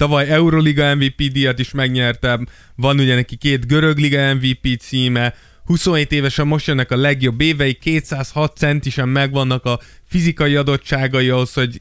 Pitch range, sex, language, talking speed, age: 125-145 Hz, male, Hungarian, 145 wpm, 20-39